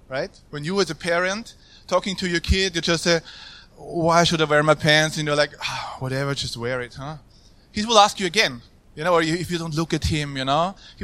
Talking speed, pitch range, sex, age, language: 250 wpm, 145-175 Hz, male, 20-39, Croatian